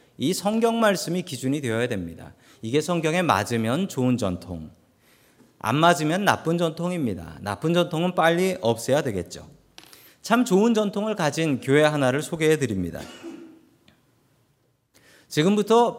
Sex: male